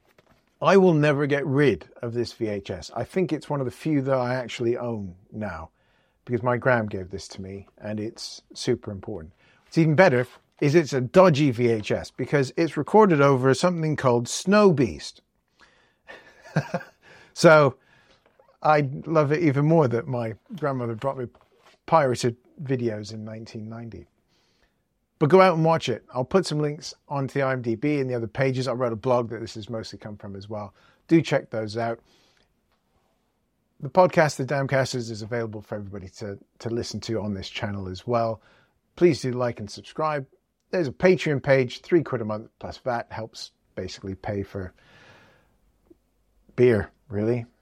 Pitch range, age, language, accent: 110-150 Hz, 40-59, English, British